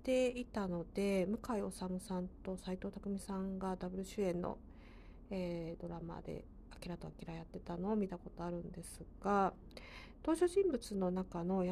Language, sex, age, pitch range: Japanese, female, 40-59, 190-240 Hz